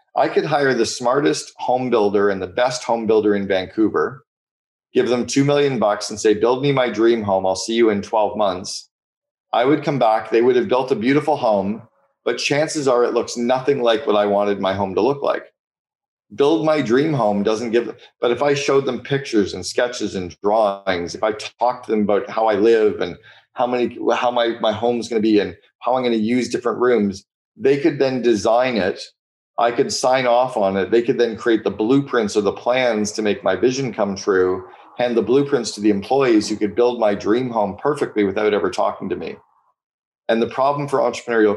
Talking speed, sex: 220 wpm, male